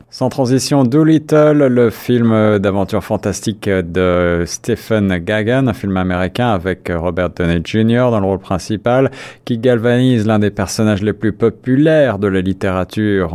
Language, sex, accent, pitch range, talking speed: French, male, French, 95-110 Hz, 145 wpm